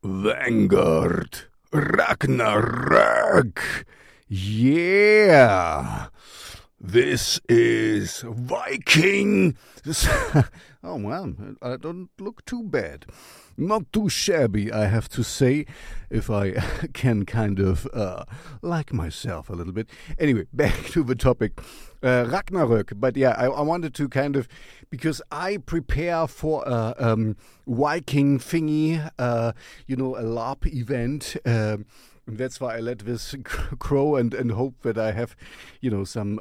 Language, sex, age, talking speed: English, male, 50-69, 125 wpm